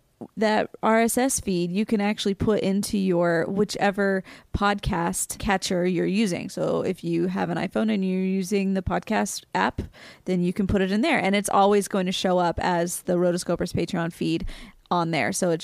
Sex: female